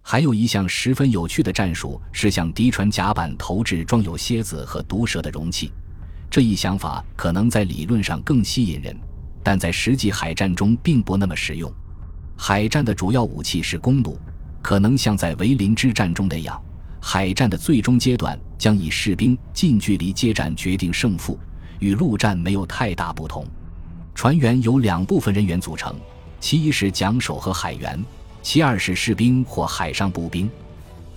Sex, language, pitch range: male, Chinese, 85-110 Hz